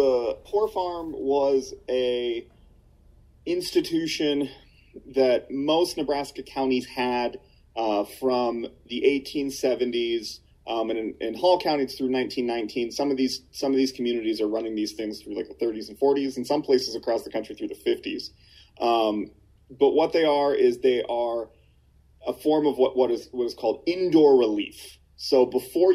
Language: English